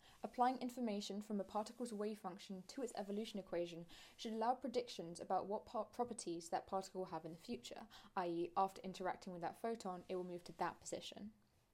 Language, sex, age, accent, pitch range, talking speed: English, female, 10-29, British, 180-230 Hz, 185 wpm